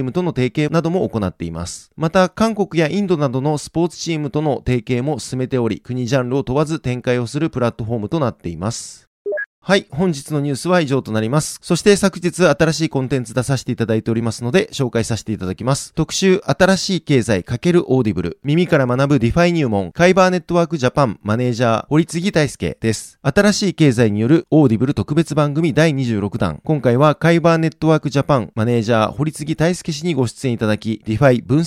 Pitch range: 120-165 Hz